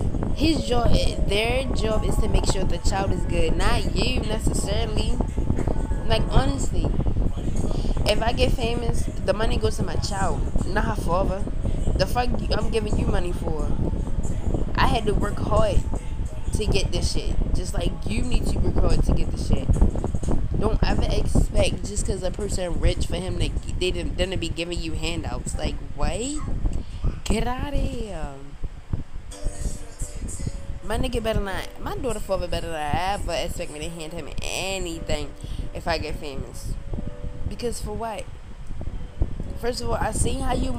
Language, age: English, 20-39